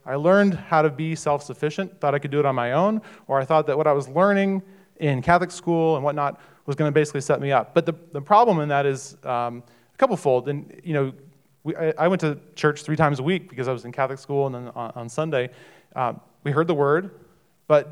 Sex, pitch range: male, 140-175 Hz